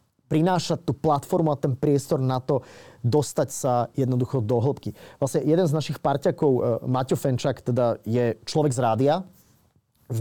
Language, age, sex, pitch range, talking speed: Slovak, 30-49, male, 125-165 Hz, 155 wpm